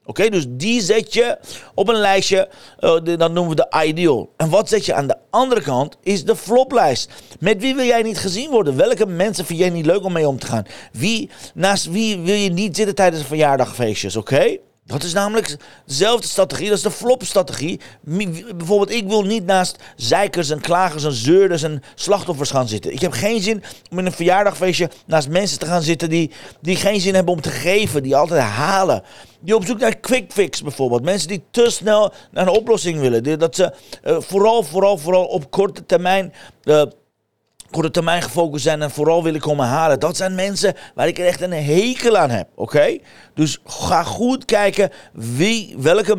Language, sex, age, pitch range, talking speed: Dutch, male, 40-59, 150-200 Hz, 195 wpm